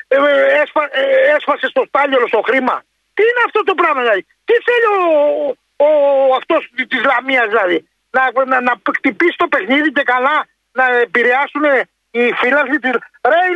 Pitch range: 270-345 Hz